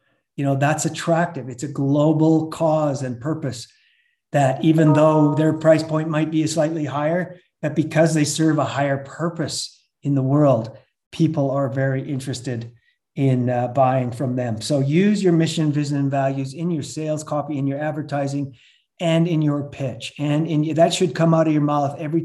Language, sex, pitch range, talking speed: English, male, 135-160 Hz, 185 wpm